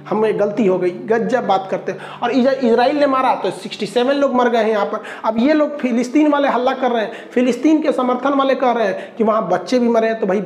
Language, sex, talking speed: Hindi, male, 255 wpm